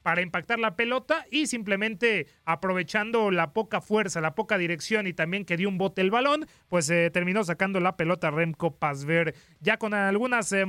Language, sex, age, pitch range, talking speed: Spanish, male, 30-49, 165-215 Hz, 185 wpm